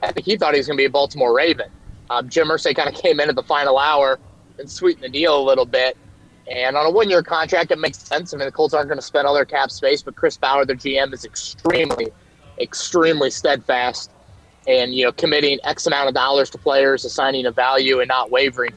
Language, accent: English, American